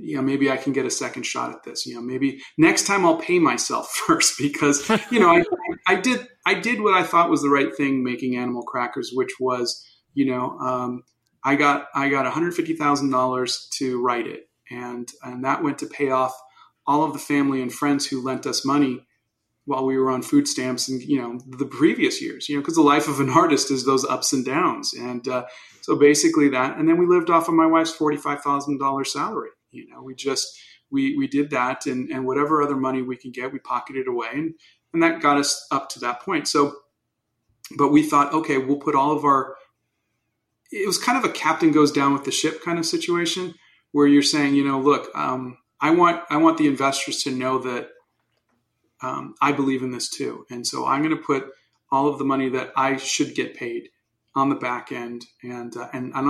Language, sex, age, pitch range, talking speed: English, male, 30-49, 125-155 Hz, 220 wpm